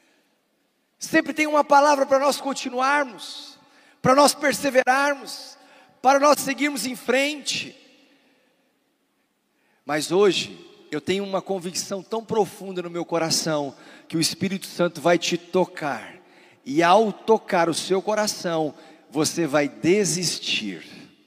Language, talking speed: Portuguese, 120 wpm